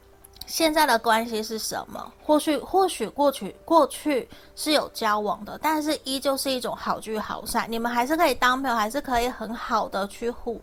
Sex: female